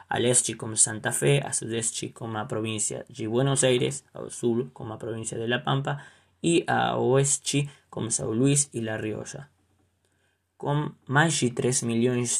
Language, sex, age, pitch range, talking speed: Portuguese, male, 20-39, 115-140 Hz, 165 wpm